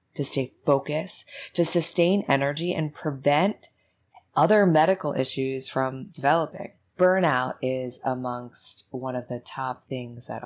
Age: 20-39